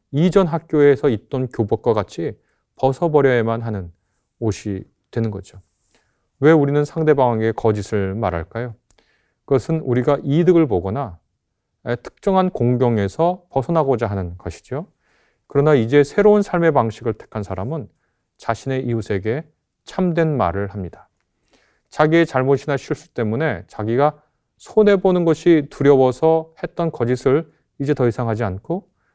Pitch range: 110-165 Hz